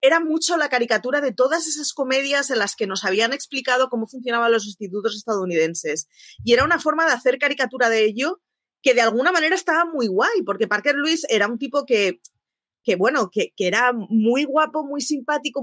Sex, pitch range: female, 200-275 Hz